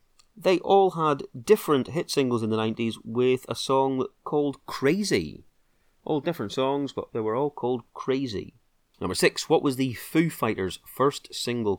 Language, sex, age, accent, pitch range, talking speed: English, male, 30-49, British, 100-140 Hz, 165 wpm